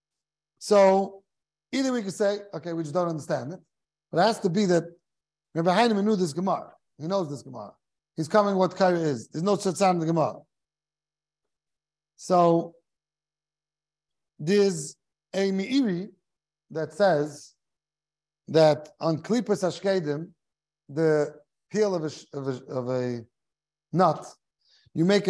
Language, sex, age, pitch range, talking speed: English, male, 50-69, 155-200 Hz, 130 wpm